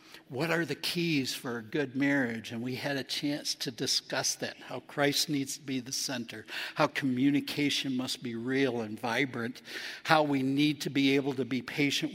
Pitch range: 130-155 Hz